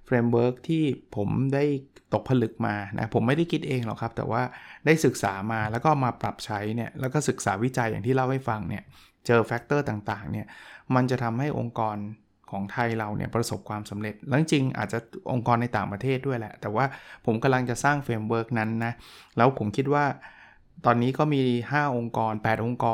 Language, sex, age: Thai, male, 20-39